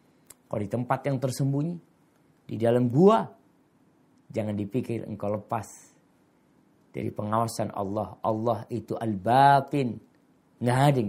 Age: 50-69